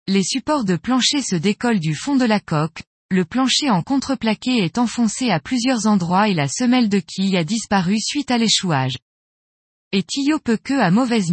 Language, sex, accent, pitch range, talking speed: French, female, French, 180-245 Hz, 185 wpm